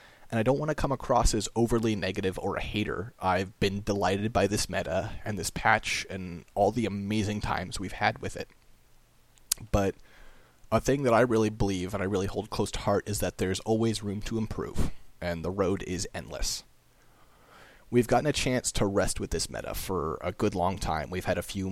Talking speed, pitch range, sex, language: 205 wpm, 95-115 Hz, male, English